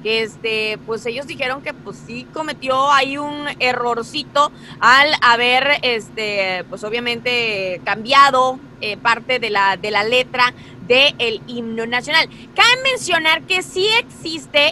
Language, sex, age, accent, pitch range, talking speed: English, female, 20-39, Mexican, 225-280 Hz, 135 wpm